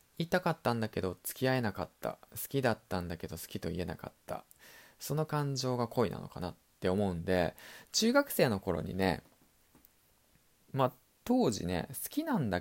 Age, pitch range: 20-39, 90-135 Hz